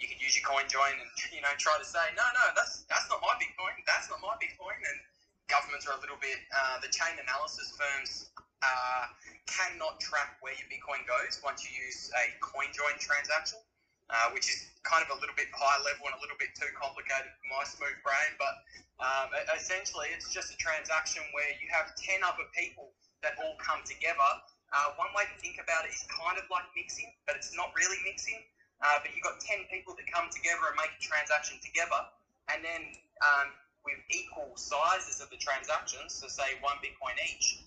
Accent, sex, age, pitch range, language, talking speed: Australian, male, 20-39, 140-180 Hz, English, 205 wpm